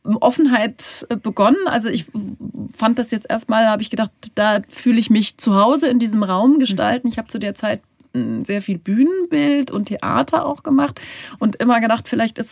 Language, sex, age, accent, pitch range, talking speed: German, female, 30-49, German, 195-245 Hz, 185 wpm